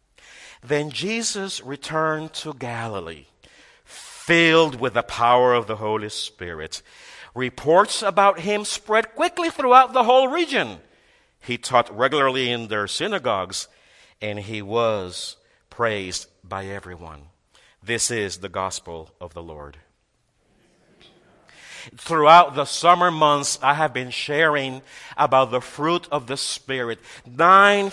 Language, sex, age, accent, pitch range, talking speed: English, male, 50-69, American, 125-185 Hz, 120 wpm